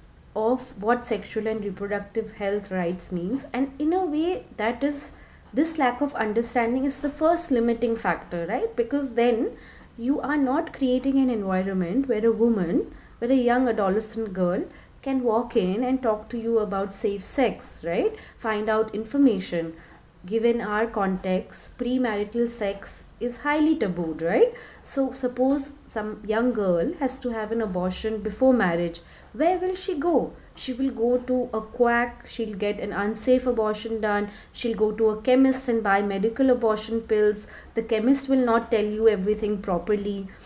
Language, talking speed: English, 160 wpm